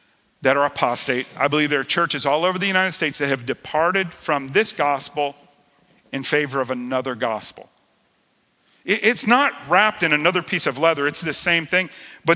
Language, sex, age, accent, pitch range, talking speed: English, male, 40-59, American, 150-195 Hz, 180 wpm